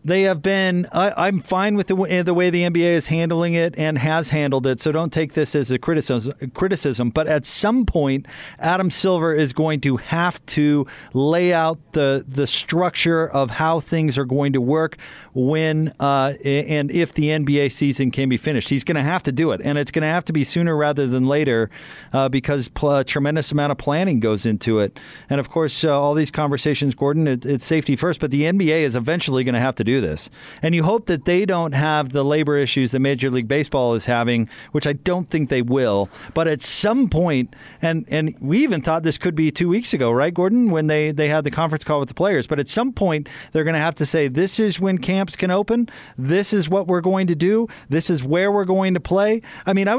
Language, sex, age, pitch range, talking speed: English, male, 40-59, 140-180 Hz, 235 wpm